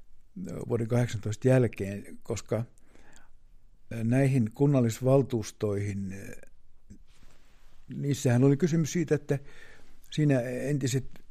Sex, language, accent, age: male, Finnish, native, 60-79